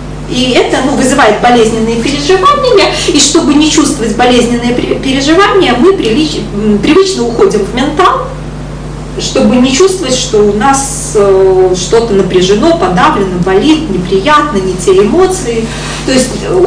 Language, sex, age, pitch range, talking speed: Russian, female, 30-49, 205-320 Hz, 120 wpm